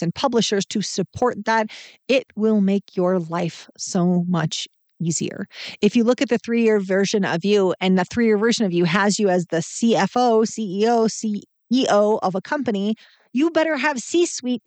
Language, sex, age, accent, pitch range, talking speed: English, female, 40-59, American, 190-255 Hz, 175 wpm